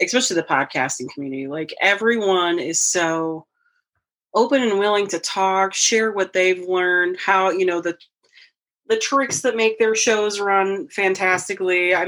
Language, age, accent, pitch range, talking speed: English, 30-49, American, 165-225 Hz, 150 wpm